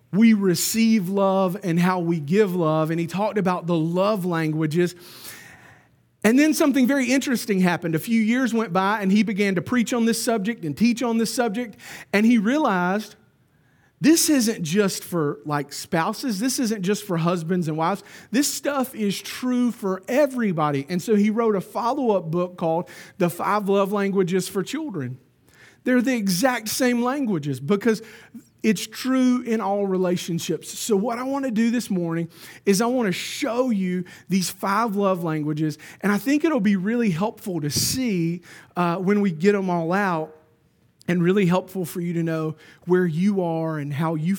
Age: 40-59